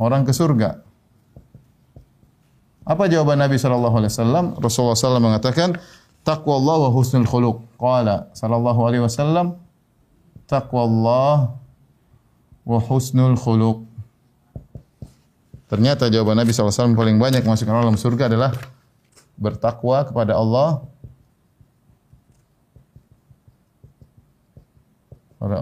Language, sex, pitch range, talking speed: Indonesian, male, 120-170 Hz, 85 wpm